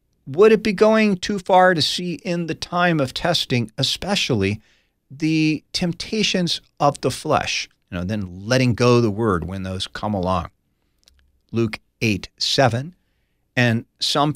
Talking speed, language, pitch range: 145 wpm, English, 100-140 Hz